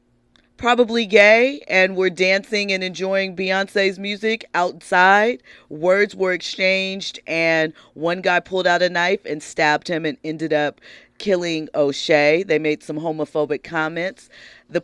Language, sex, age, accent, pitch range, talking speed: English, female, 40-59, American, 150-190 Hz, 140 wpm